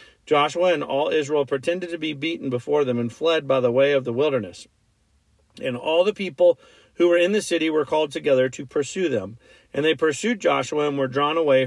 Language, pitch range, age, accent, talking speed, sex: English, 130-175 Hz, 40-59, American, 210 wpm, male